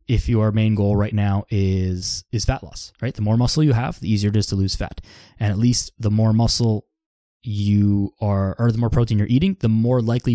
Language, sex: English, male